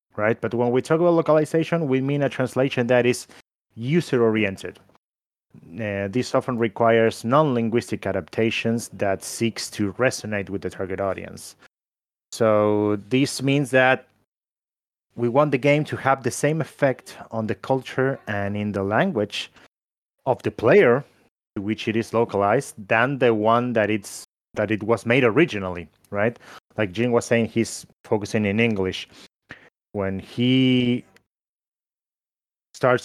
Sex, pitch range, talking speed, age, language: male, 105-130 Hz, 140 wpm, 30-49, English